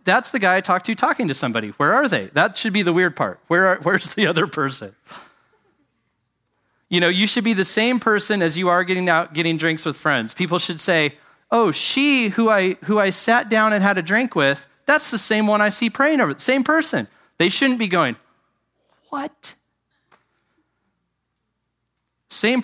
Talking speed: 190 wpm